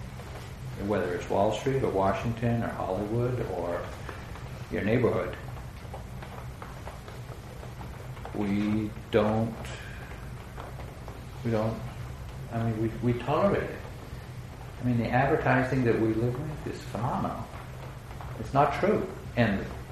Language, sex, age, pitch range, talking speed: English, male, 60-79, 105-125 Hz, 105 wpm